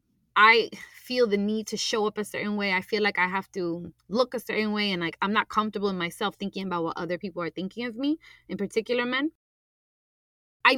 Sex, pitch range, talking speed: female, 175-225 Hz, 225 wpm